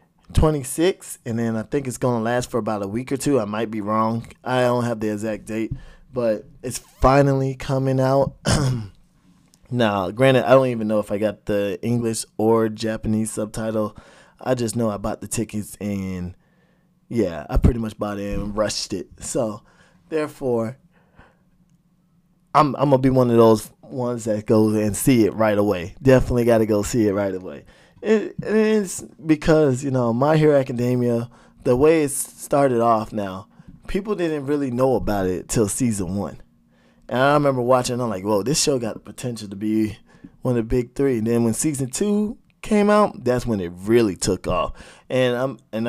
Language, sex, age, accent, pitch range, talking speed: English, male, 20-39, American, 110-135 Hz, 185 wpm